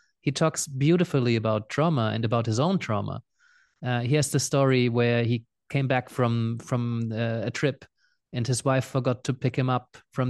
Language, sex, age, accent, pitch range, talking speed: English, male, 30-49, German, 120-150 Hz, 190 wpm